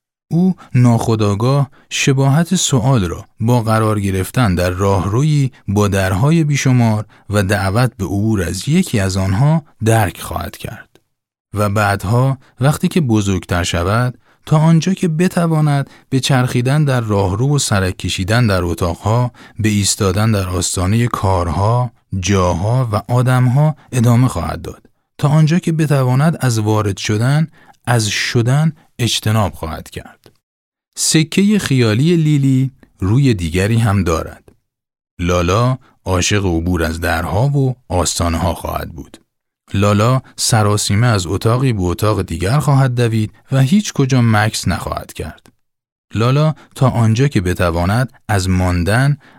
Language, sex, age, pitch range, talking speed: Persian, male, 30-49, 95-130 Hz, 130 wpm